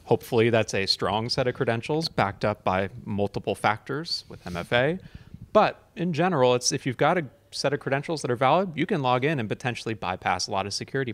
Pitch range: 105-140 Hz